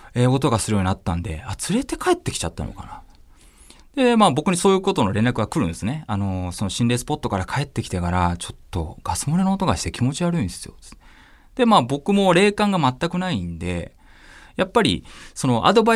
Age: 20-39